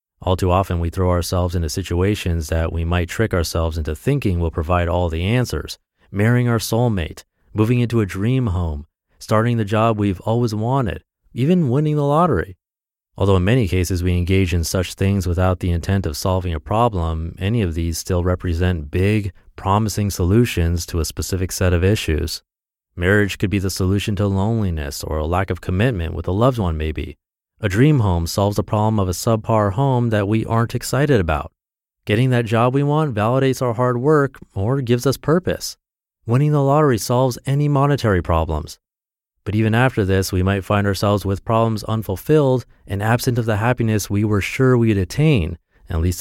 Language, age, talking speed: English, 30-49, 185 wpm